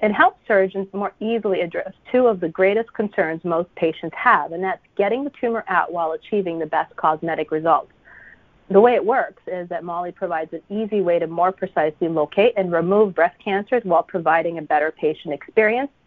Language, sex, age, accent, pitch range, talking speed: English, female, 40-59, American, 170-220 Hz, 190 wpm